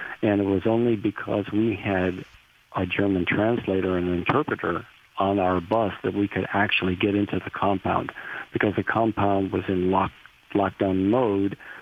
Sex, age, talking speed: male, 50-69, 155 wpm